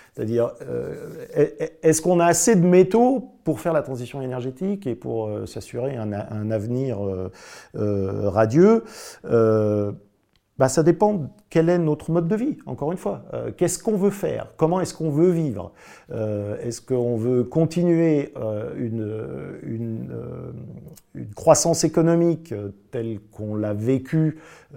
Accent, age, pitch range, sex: French, 50-69, 110-170 Hz, male